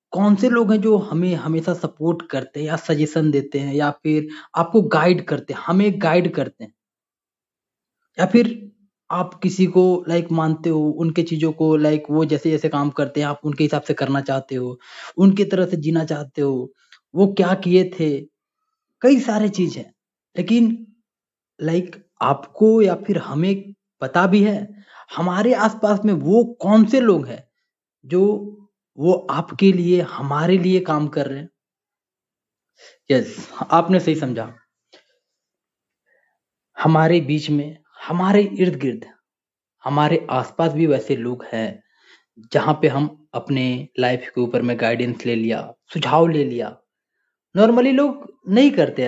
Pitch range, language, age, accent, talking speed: 145-200 Hz, Hindi, 20-39, native, 150 wpm